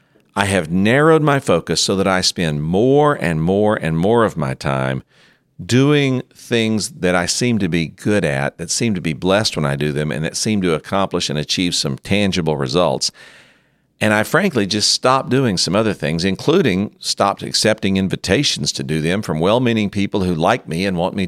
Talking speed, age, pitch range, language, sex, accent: 195 wpm, 50-69, 85-110 Hz, English, male, American